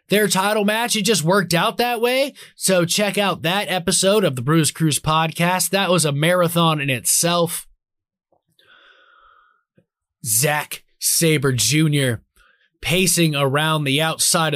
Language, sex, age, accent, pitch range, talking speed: English, male, 20-39, American, 130-185 Hz, 130 wpm